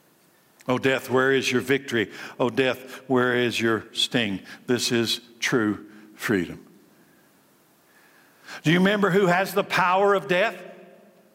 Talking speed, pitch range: 130 wpm, 180-235 Hz